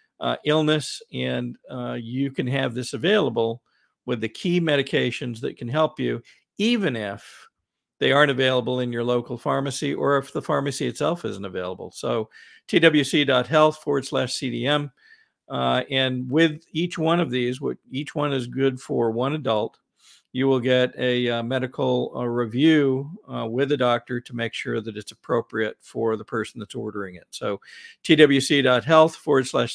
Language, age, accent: English, 50-69, American